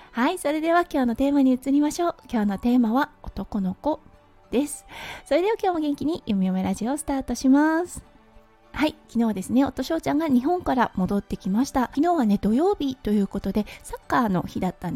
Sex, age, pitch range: female, 20-39, 220-290 Hz